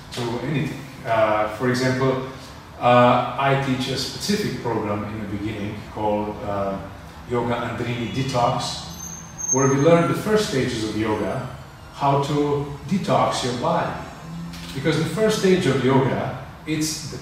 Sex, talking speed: male, 135 wpm